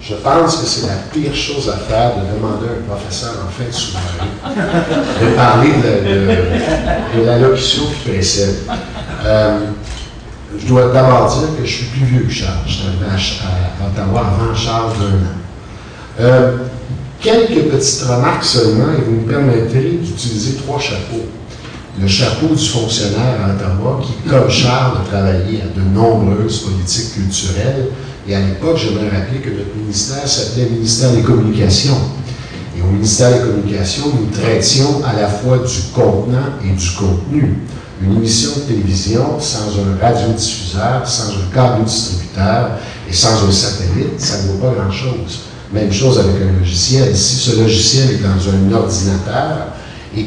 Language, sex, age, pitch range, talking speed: French, male, 50-69, 100-130 Hz, 165 wpm